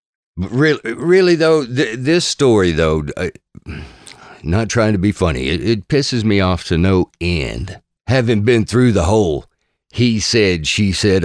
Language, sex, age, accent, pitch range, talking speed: English, male, 50-69, American, 90-120 Hz, 160 wpm